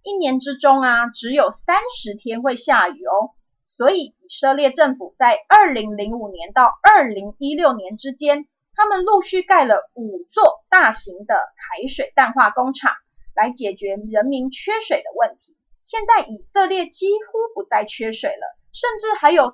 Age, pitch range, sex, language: 30-49, 245-380 Hz, female, Chinese